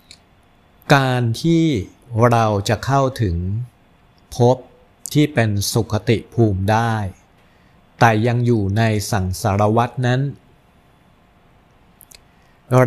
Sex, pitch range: male, 100-120 Hz